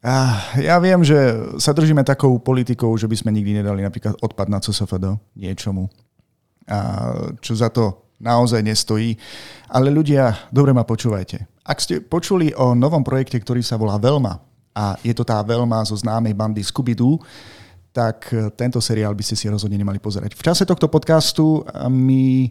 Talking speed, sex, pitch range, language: 165 wpm, male, 110-135 Hz, Slovak